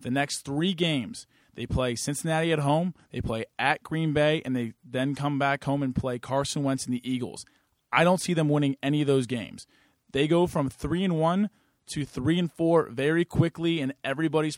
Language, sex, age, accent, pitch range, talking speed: English, male, 20-39, American, 130-160 Hz, 205 wpm